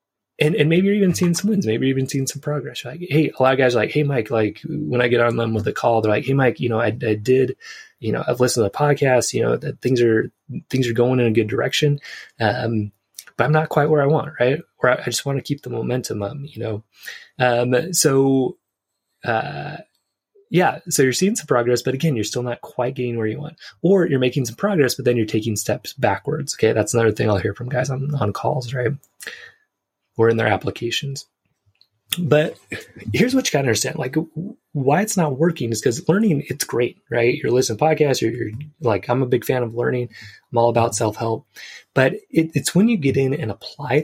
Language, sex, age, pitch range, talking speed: English, male, 20-39, 115-150 Hz, 240 wpm